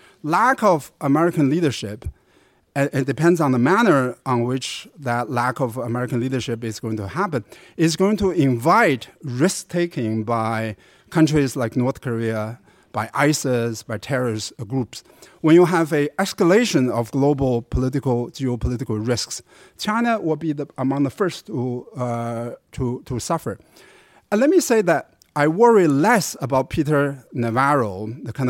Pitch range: 120-165 Hz